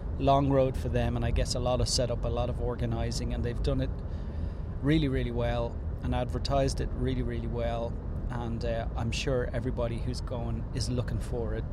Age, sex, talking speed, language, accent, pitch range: 30-49, male, 195 wpm, English, Irish, 90-130 Hz